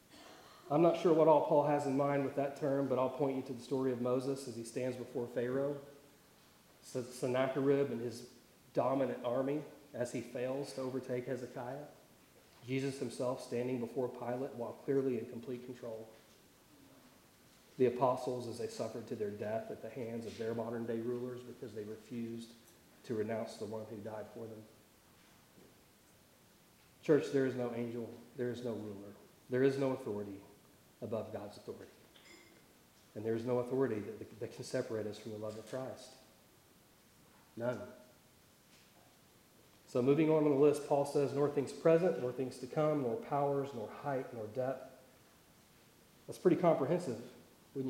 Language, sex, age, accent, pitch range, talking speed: English, male, 40-59, American, 115-140 Hz, 165 wpm